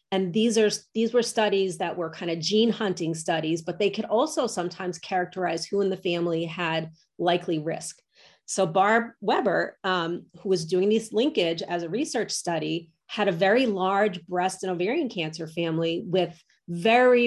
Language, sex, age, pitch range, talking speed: English, female, 30-49, 175-210 Hz, 175 wpm